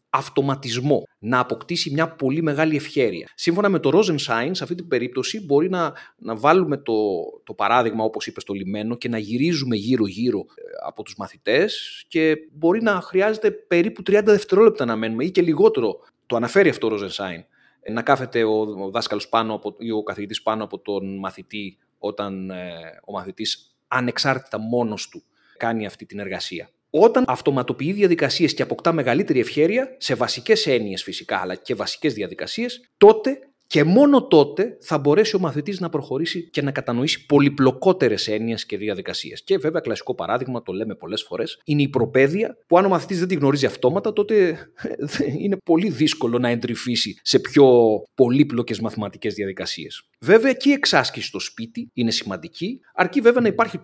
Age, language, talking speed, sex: 30-49, Greek, 165 wpm, male